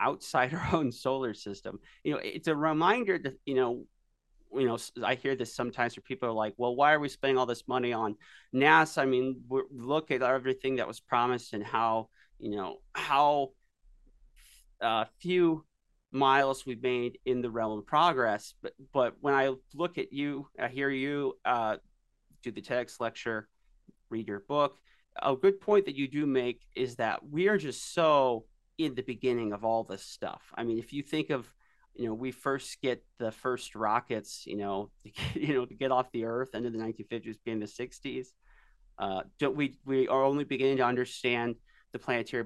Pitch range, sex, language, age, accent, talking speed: 115-140 Hz, male, English, 30-49, American, 190 wpm